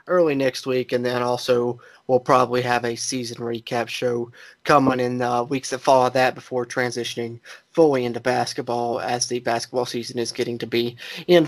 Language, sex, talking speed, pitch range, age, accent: English, male, 185 wpm, 125-145 Hz, 20-39, American